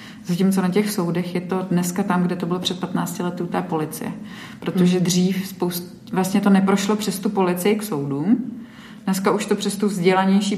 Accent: native